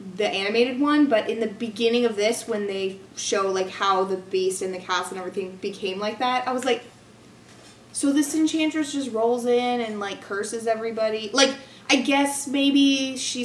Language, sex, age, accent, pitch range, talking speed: English, female, 20-39, American, 195-245 Hz, 185 wpm